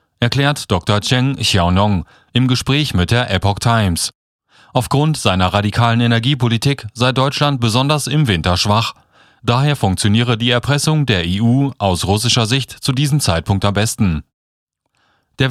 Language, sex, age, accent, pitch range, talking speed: German, male, 40-59, German, 100-135 Hz, 135 wpm